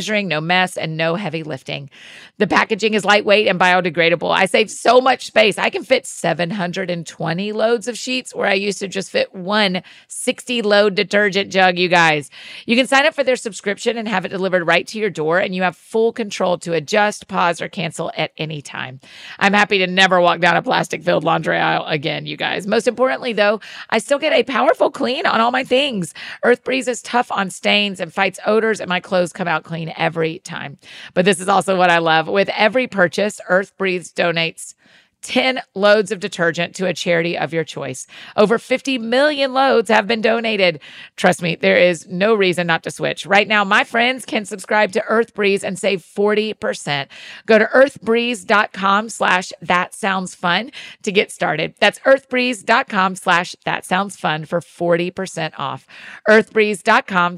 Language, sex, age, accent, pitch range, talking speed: English, female, 40-59, American, 180-225 Hz, 190 wpm